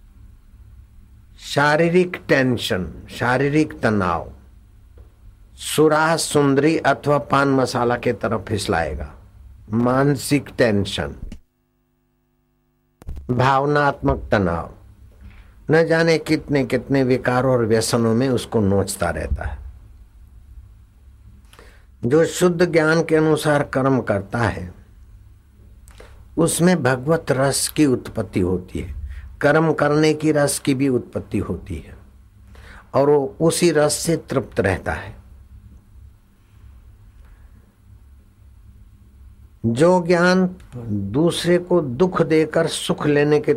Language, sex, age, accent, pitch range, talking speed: Hindi, male, 60-79, native, 100-145 Hz, 95 wpm